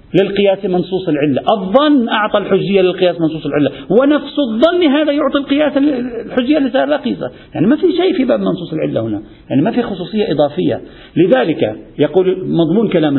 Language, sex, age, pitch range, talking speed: Arabic, male, 50-69, 140-195 Hz, 155 wpm